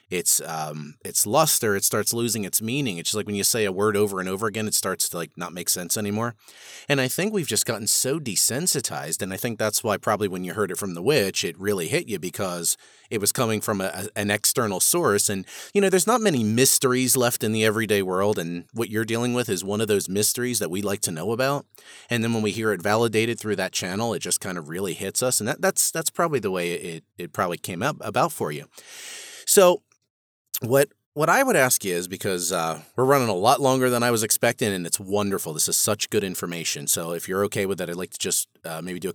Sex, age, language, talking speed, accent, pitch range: male, 30-49, English, 255 wpm, American, 95-130 Hz